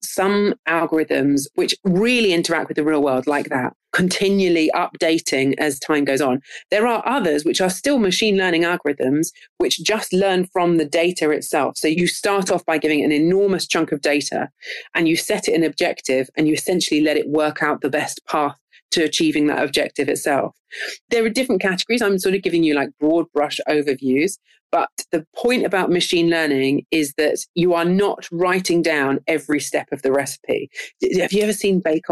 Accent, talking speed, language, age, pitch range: British, 190 wpm, German, 40-59, 150-190 Hz